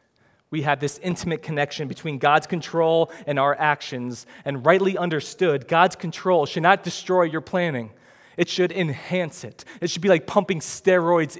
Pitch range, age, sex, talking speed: 145-185 Hz, 20-39, male, 165 wpm